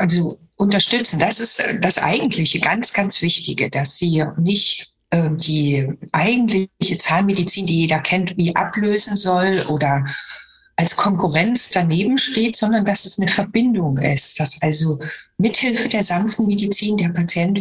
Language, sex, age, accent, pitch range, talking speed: German, female, 60-79, German, 160-210 Hz, 135 wpm